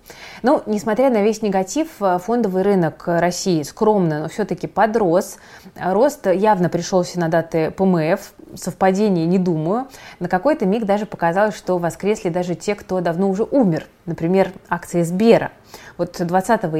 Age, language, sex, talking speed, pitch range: 20-39, Russian, female, 140 wpm, 170-200 Hz